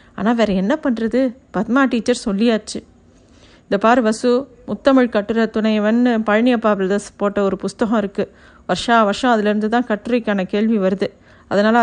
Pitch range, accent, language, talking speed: 210-250 Hz, native, Tamil, 130 wpm